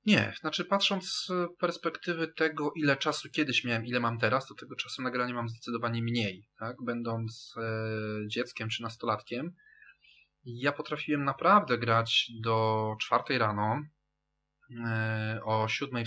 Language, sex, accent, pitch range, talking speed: Polish, male, native, 110-155 Hz, 135 wpm